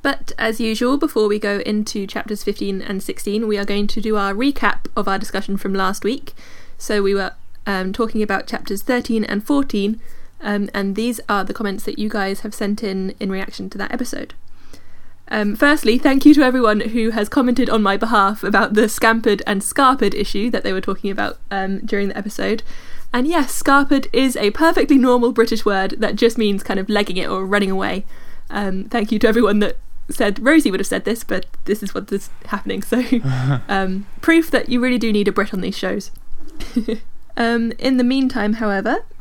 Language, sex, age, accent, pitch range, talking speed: English, female, 20-39, British, 200-245 Hz, 205 wpm